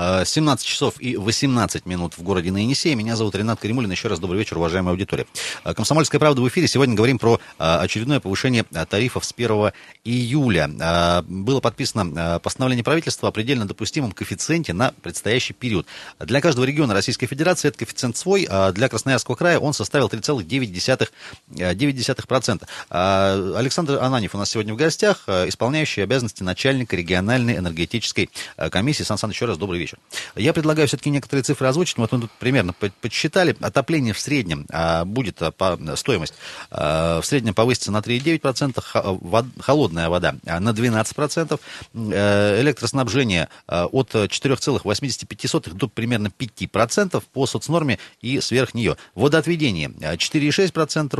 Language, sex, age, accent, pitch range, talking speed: Russian, male, 30-49, native, 100-140 Hz, 135 wpm